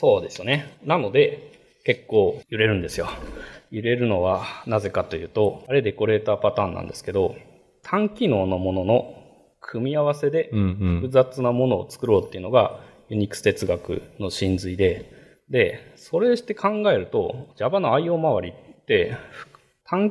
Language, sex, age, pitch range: Japanese, male, 20-39, 105-165 Hz